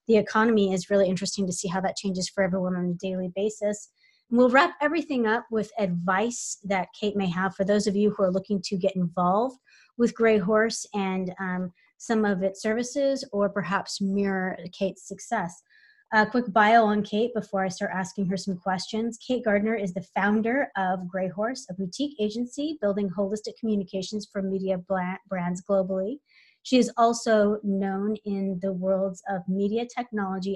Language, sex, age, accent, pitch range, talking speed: English, female, 30-49, American, 190-225 Hz, 175 wpm